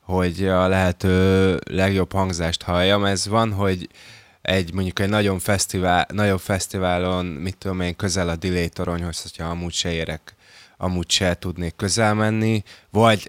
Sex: male